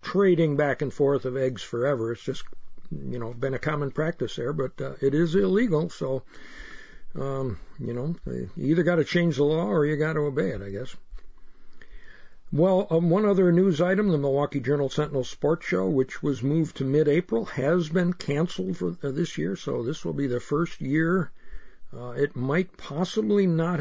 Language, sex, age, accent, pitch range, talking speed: English, male, 60-79, American, 130-165 Hz, 190 wpm